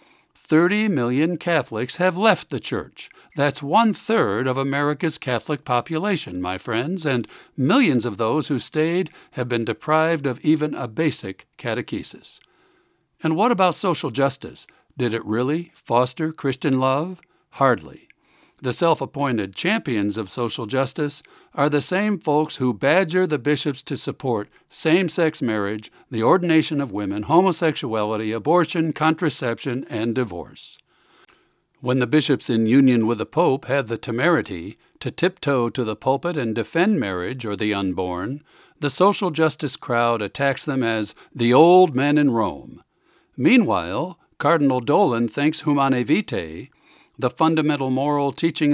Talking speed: 140 wpm